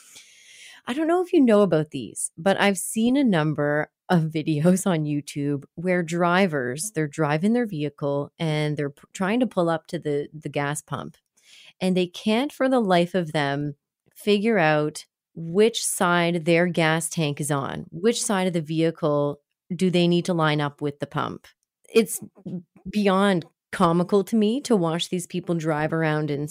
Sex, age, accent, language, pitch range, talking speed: female, 30-49, American, English, 155-205 Hz, 175 wpm